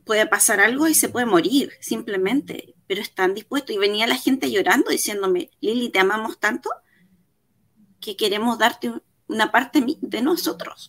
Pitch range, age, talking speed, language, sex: 190-290 Hz, 20-39, 155 wpm, Spanish, female